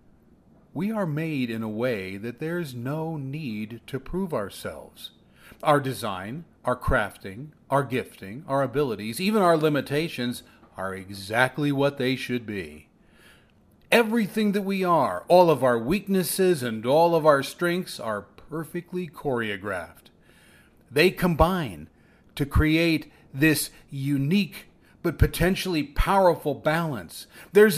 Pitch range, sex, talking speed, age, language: 120-180 Hz, male, 125 wpm, 40-59, English